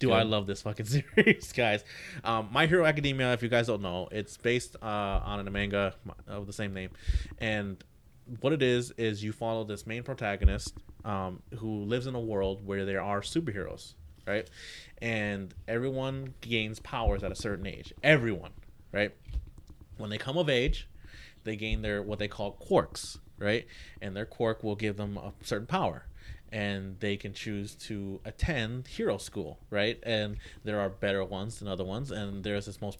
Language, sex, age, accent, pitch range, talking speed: English, male, 30-49, American, 95-115 Hz, 180 wpm